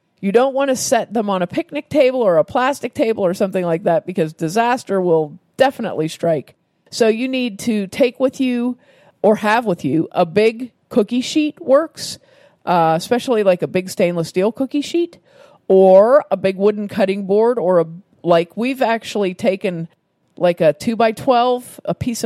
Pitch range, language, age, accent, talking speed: 170-235 Hz, English, 40-59, American, 180 wpm